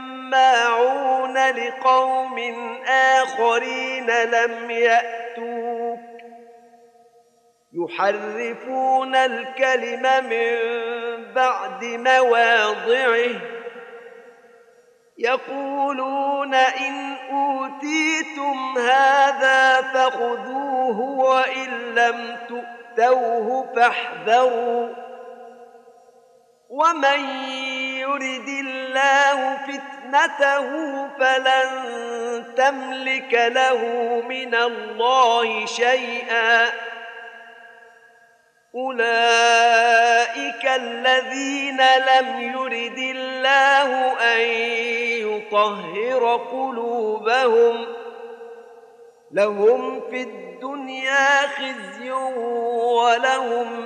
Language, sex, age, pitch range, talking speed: Arabic, male, 40-59, 235-260 Hz, 45 wpm